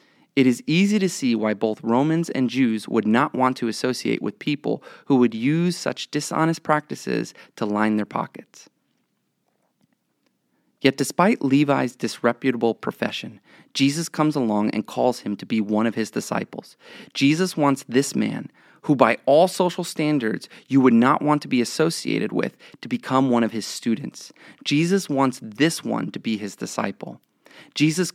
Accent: American